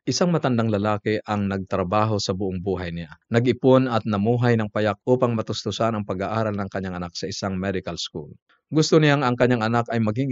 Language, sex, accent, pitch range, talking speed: Filipino, male, native, 95-115 Hz, 185 wpm